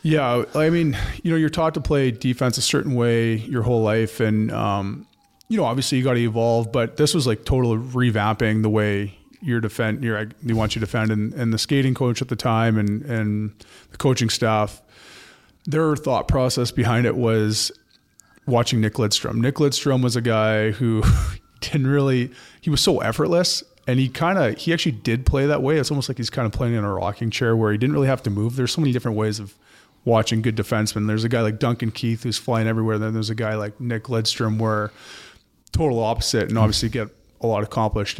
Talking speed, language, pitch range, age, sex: 215 wpm, English, 110-130 Hz, 30-49, male